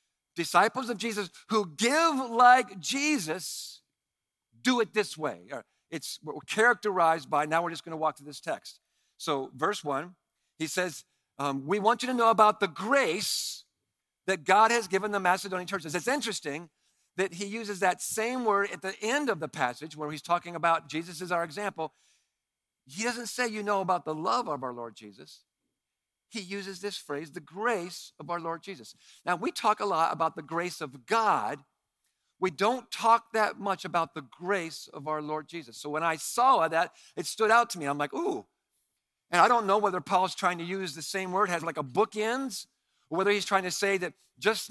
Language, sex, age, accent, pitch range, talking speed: English, male, 50-69, American, 165-215 Hz, 195 wpm